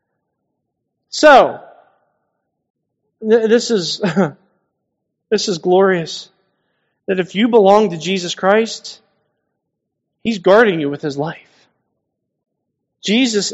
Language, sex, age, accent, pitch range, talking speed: English, male, 40-59, American, 165-225 Hz, 90 wpm